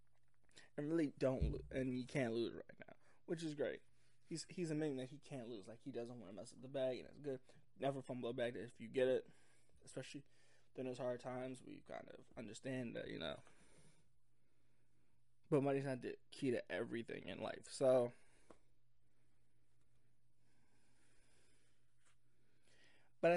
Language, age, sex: English, 20-39, male